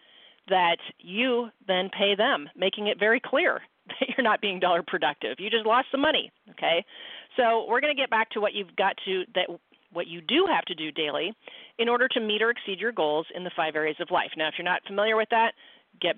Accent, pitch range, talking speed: American, 180-235 Hz, 230 wpm